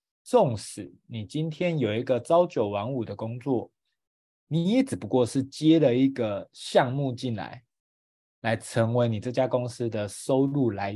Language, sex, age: Chinese, male, 20-39